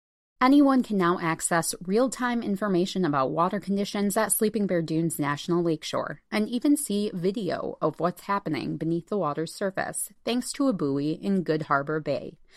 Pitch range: 170-225 Hz